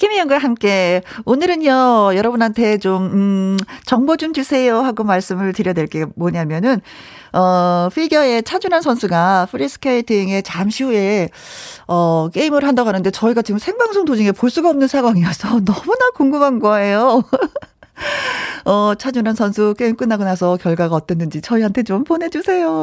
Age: 40-59